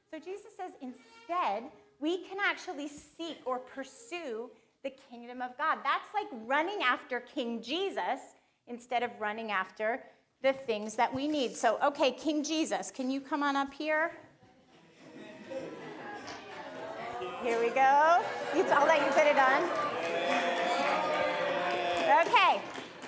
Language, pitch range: English, 255-365 Hz